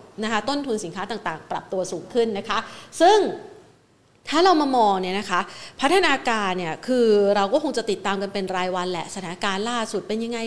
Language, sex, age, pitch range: Thai, female, 30-49, 190-235 Hz